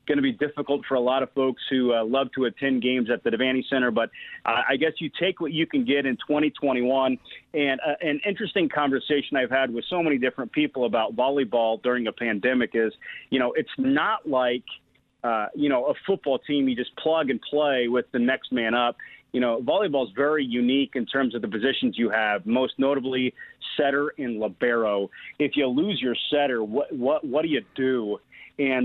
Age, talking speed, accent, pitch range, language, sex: 40-59, 210 wpm, American, 120-145 Hz, English, male